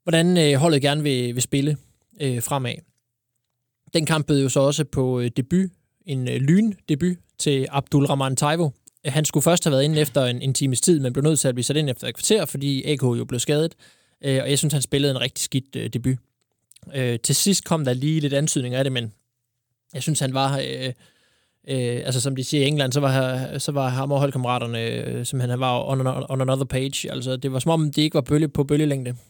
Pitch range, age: 125-150 Hz, 20-39